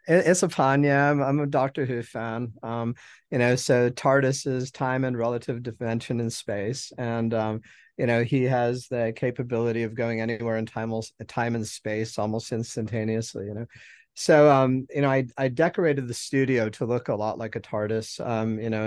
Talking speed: 190 wpm